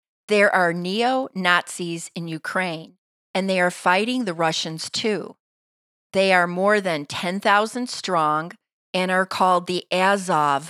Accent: American